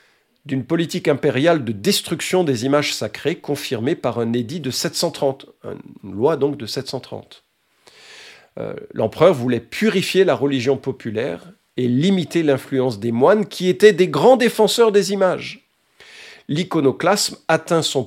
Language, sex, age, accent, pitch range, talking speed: French, male, 50-69, French, 125-170 Hz, 135 wpm